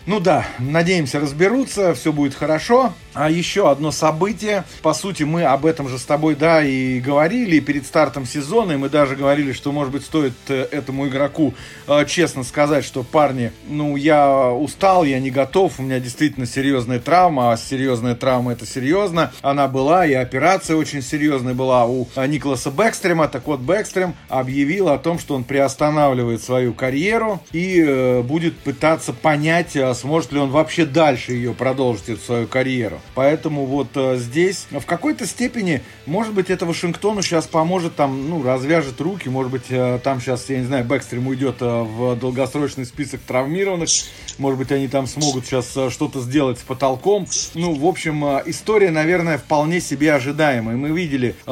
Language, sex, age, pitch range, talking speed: English, male, 40-59, 130-160 Hz, 165 wpm